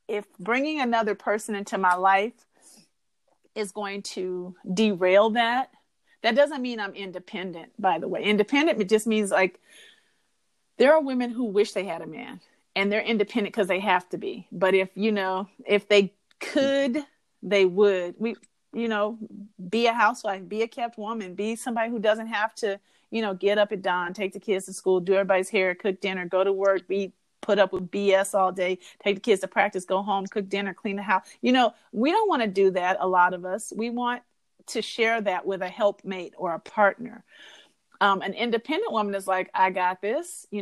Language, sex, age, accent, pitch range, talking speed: English, female, 40-59, American, 190-225 Hz, 205 wpm